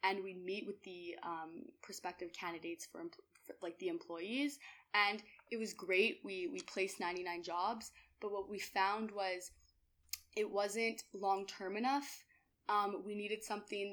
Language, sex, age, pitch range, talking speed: English, female, 20-39, 185-210 Hz, 155 wpm